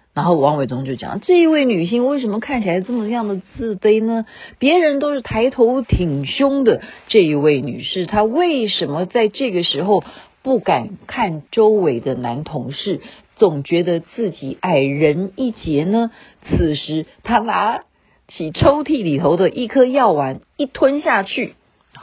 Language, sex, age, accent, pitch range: Chinese, female, 50-69, native, 170-255 Hz